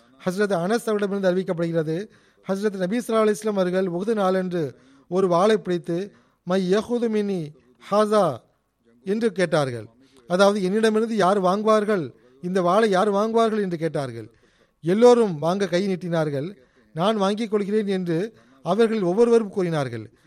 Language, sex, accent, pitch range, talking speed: Tamil, male, native, 165-210 Hz, 120 wpm